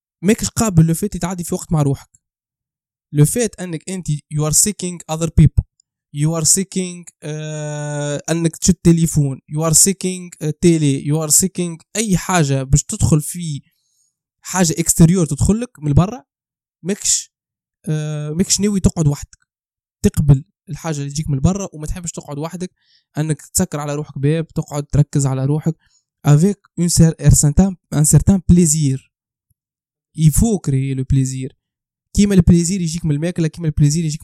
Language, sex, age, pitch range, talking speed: Arabic, male, 20-39, 145-180 Hz, 145 wpm